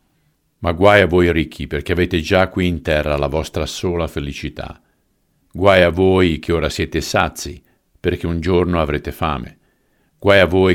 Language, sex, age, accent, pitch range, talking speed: Italian, male, 50-69, native, 75-95 Hz, 165 wpm